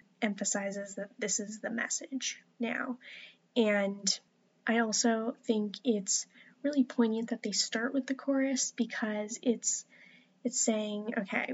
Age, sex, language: 10-29, female, English